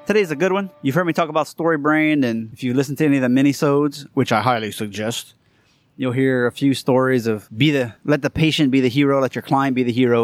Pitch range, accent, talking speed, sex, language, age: 120-155 Hz, American, 260 wpm, male, English, 30-49